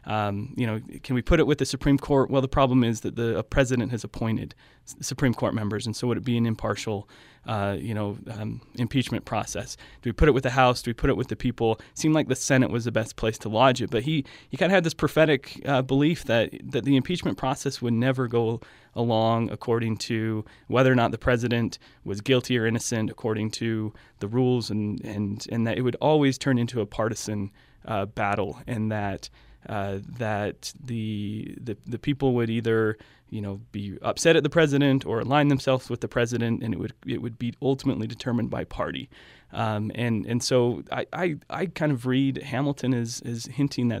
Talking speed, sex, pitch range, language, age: 215 wpm, male, 110-130 Hz, English, 20-39